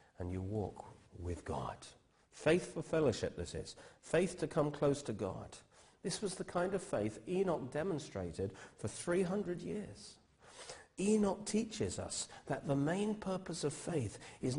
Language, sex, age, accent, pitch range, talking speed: English, male, 50-69, British, 105-160 Hz, 150 wpm